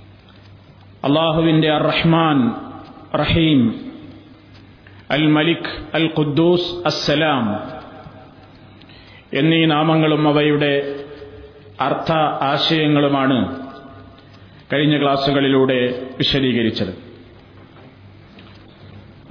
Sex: male